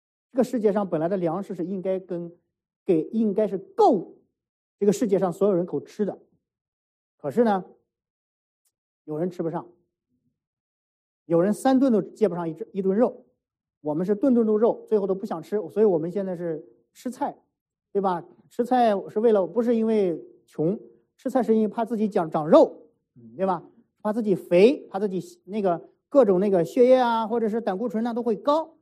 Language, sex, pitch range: English, male, 165-225 Hz